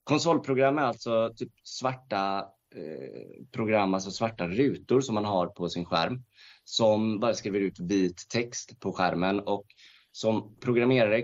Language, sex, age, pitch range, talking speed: Swedish, male, 30-49, 90-115 Hz, 140 wpm